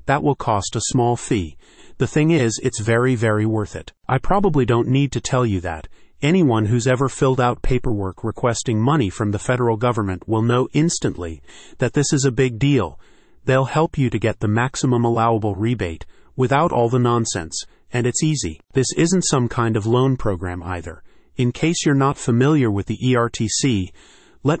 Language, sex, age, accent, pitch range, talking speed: English, male, 40-59, American, 110-135 Hz, 185 wpm